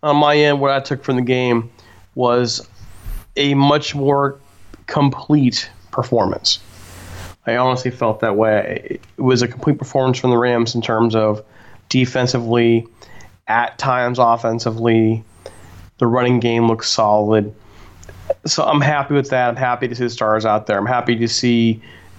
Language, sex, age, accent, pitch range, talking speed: English, male, 30-49, American, 100-130 Hz, 155 wpm